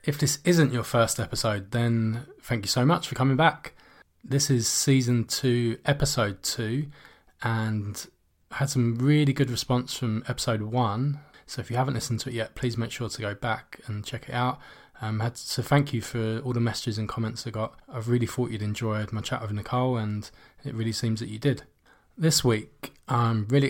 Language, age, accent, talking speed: English, 20-39, British, 210 wpm